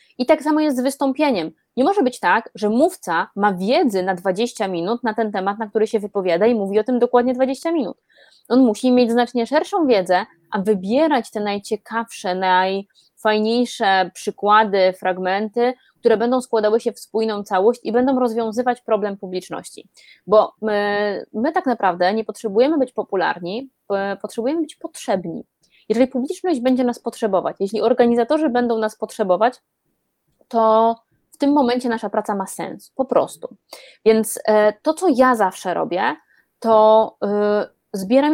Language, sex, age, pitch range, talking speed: Polish, female, 20-39, 205-250 Hz, 150 wpm